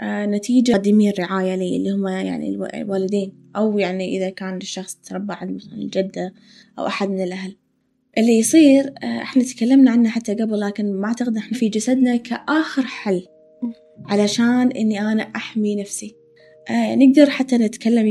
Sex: female